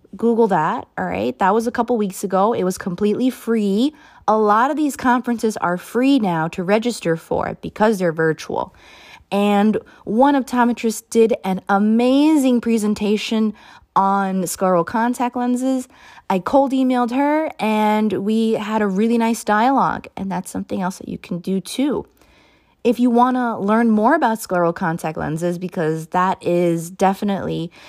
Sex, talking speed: female, 155 wpm